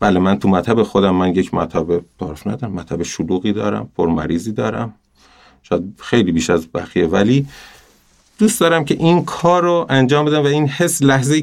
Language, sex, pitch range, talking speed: Persian, male, 100-130 Hz, 175 wpm